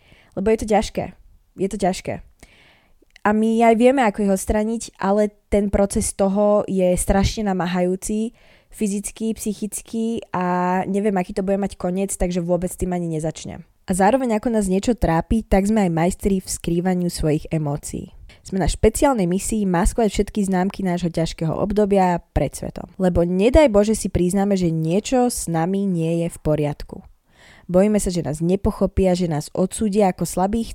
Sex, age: female, 20-39